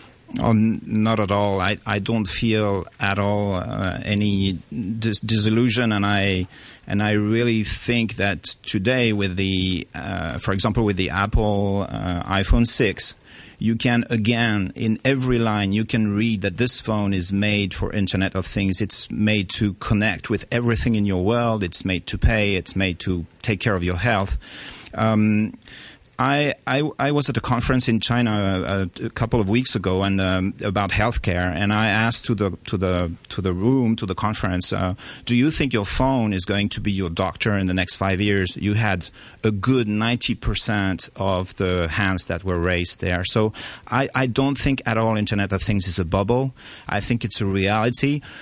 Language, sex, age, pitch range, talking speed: English, male, 40-59, 95-120 Hz, 190 wpm